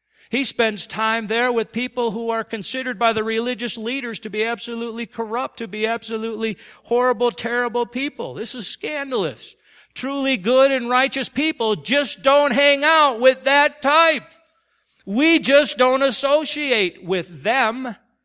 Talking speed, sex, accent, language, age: 145 wpm, male, American, English, 50-69